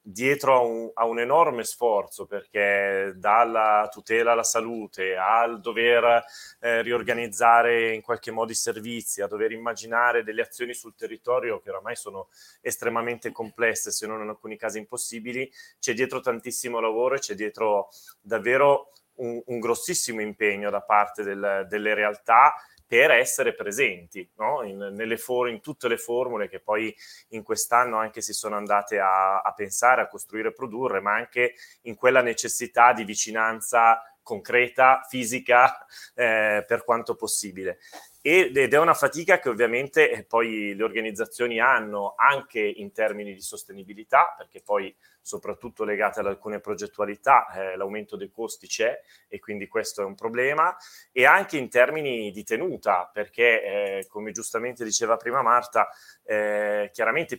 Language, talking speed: Italian, 145 wpm